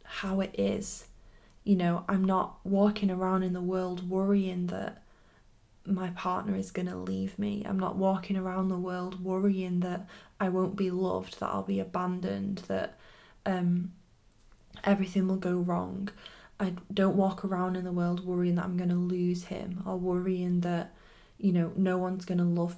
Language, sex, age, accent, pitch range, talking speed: English, female, 20-39, British, 175-195 Hz, 175 wpm